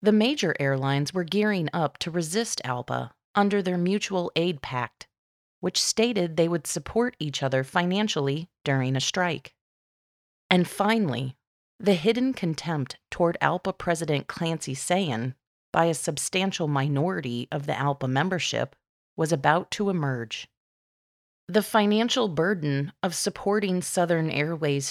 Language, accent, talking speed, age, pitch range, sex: English, American, 130 wpm, 30-49, 140-195 Hz, female